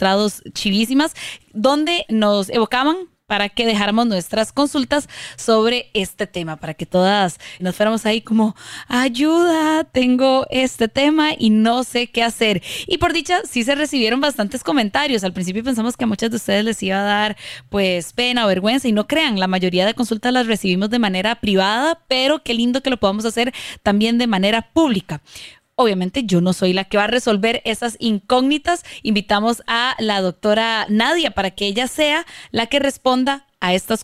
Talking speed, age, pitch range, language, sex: 180 wpm, 20-39, 200-255 Hz, Spanish, female